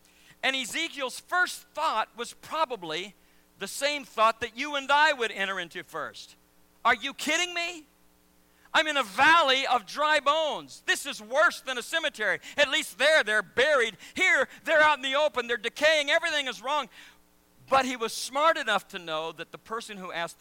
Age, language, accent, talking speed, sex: 50-69, English, American, 180 wpm, male